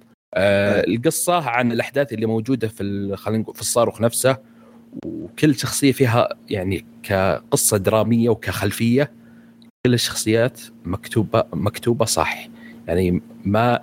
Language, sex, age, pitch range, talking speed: Arabic, male, 40-59, 105-125 Hz, 105 wpm